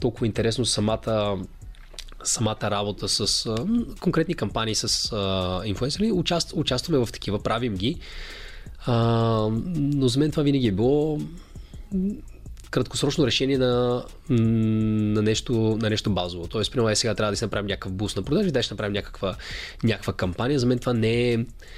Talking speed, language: 150 wpm, Bulgarian